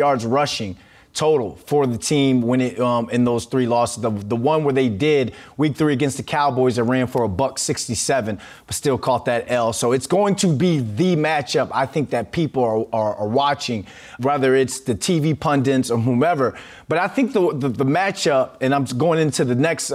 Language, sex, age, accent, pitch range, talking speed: English, male, 30-49, American, 130-175 Hz, 210 wpm